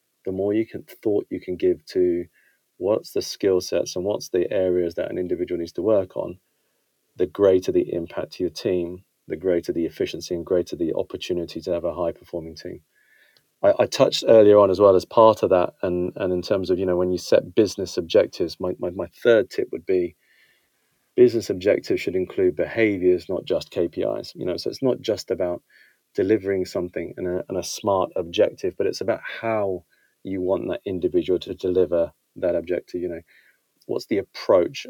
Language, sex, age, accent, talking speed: English, male, 30-49, British, 195 wpm